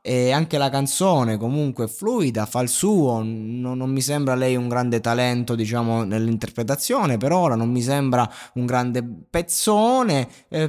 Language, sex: Italian, male